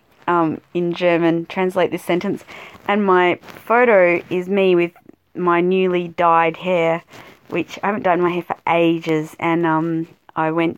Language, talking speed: English, 155 wpm